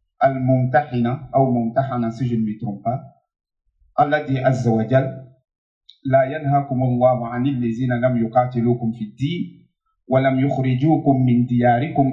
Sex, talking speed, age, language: male, 135 wpm, 50-69, French